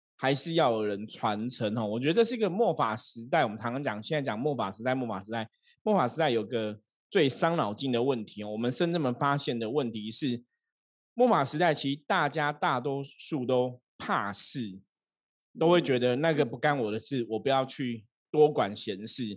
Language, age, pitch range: Chinese, 20-39, 115-145 Hz